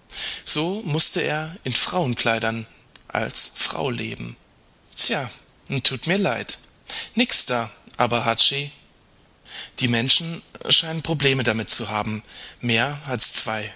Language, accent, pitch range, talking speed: German, German, 110-150 Hz, 115 wpm